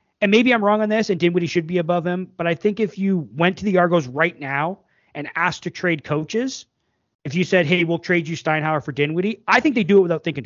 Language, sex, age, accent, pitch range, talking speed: English, male, 30-49, American, 150-205 Hz, 260 wpm